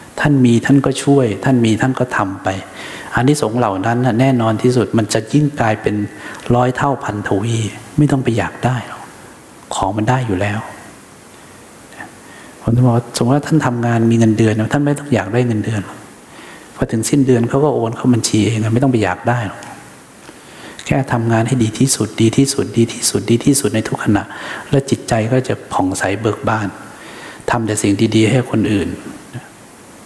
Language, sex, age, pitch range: English, male, 60-79, 110-140 Hz